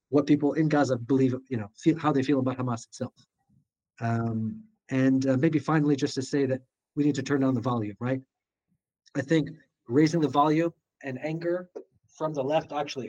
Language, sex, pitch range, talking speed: English, male, 130-160 Hz, 195 wpm